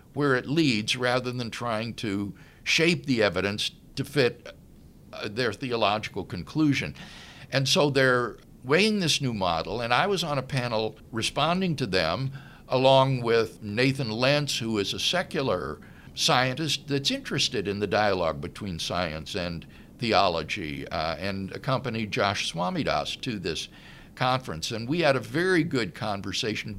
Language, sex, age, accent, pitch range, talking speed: English, male, 60-79, American, 115-155 Hz, 145 wpm